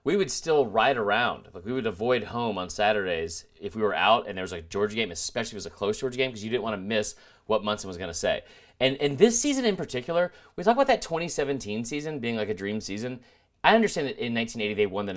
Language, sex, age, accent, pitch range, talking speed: English, male, 30-49, American, 105-145 Hz, 265 wpm